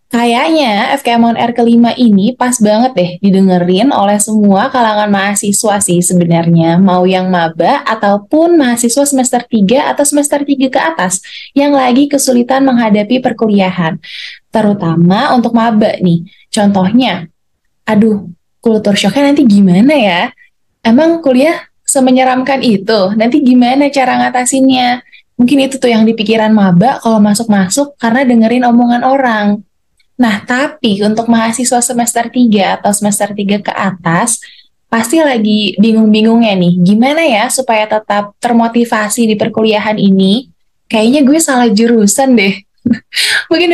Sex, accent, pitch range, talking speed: female, native, 205-260 Hz, 130 wpm